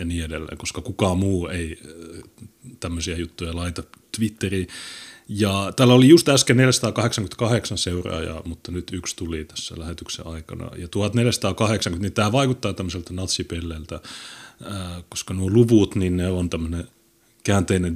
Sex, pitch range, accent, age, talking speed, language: male, 90-115 Hz, native, 30-49, 130 wpm, Finnish